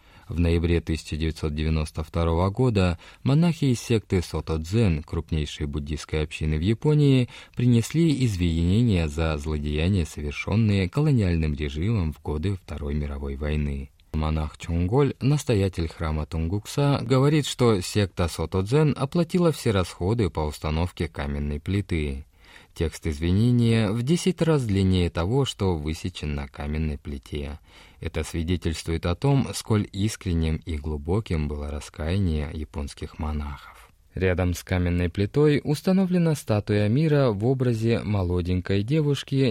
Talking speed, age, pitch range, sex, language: 115 wpm, 20-39, 80-115 Hz, male, Russian